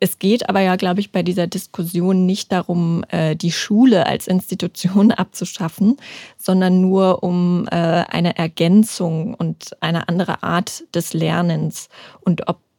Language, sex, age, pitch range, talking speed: German, female, 20-39, 175-205 Hz, 135 wpm